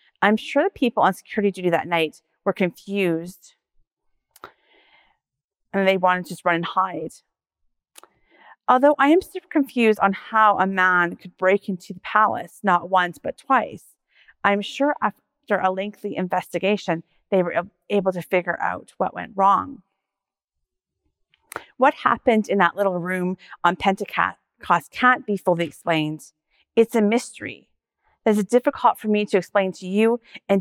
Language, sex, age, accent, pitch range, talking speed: English, female, 30-49, American, 185-225 Hz, 150 wpm